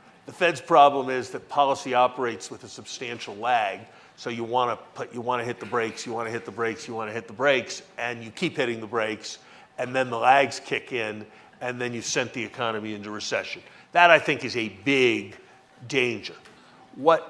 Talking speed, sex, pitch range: 200 wpm, male, 120-140 Hz